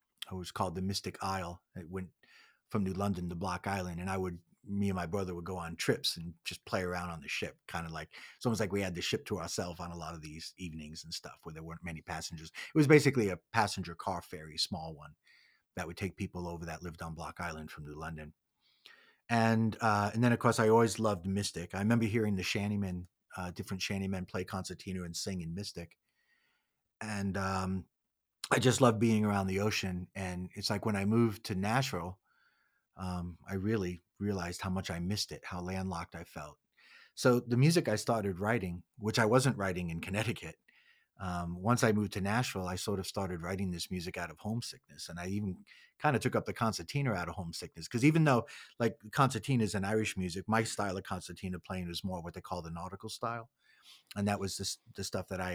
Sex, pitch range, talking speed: male, 90-105 Hz, 220 wpm